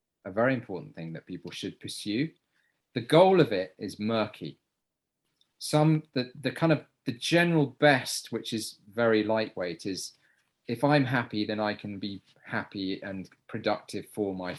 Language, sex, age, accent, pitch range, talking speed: English, male, 30-49, British, 100-120 Hz, 160 wpm